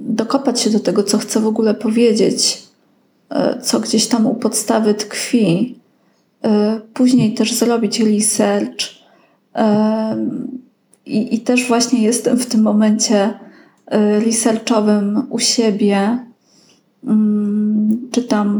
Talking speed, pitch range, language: 100 wpm, 215-250 Hz, Polish